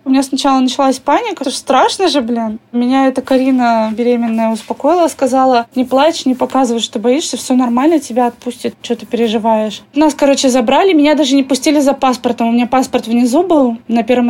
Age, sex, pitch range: 20-39, female, 250-305 Hz